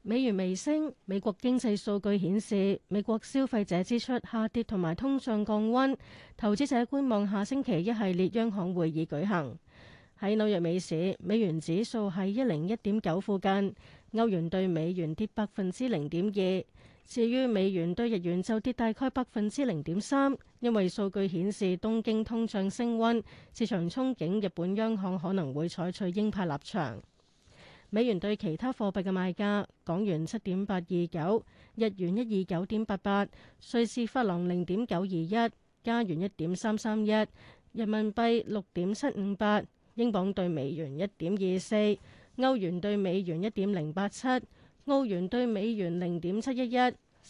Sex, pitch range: female, 185-230 Hz